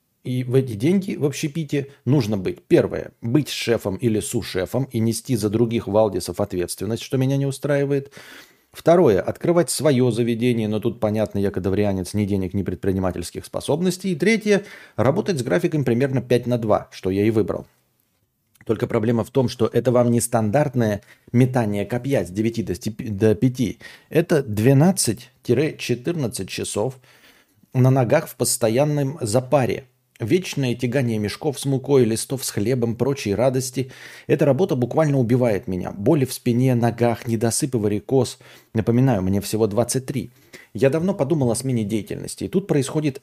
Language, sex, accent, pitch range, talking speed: Russian, male, native, 110-140 Hz, 150 wpm